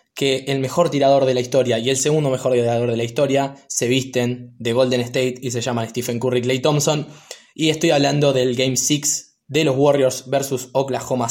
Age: 20-39